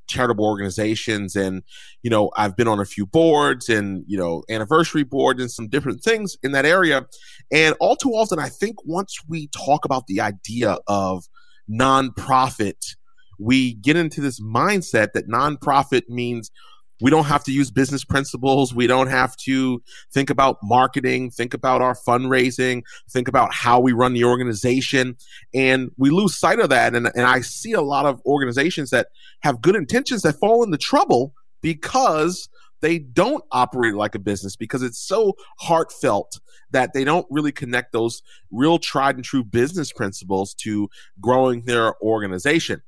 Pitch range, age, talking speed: 115-155 Hz, 30-49, 165 wpm